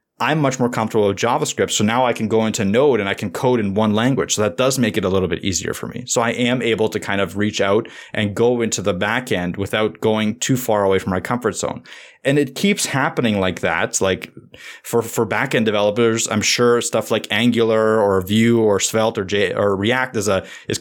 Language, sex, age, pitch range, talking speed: English, male, 20-39, 105-120 Hz, 235 wpm